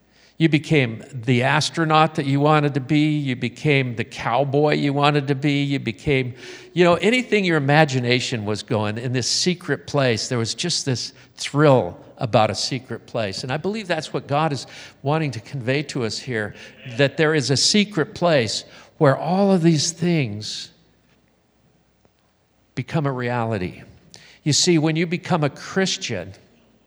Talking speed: 165 wpm